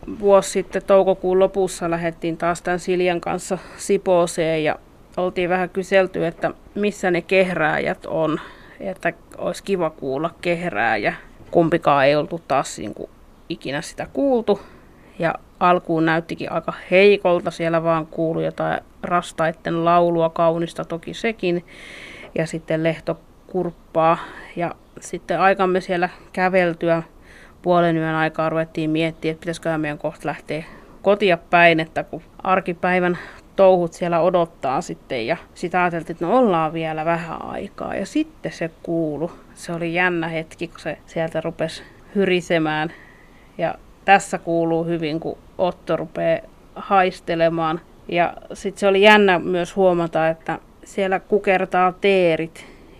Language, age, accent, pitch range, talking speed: Finnish, 30-49, native, 160-185 Hz, 130 wpm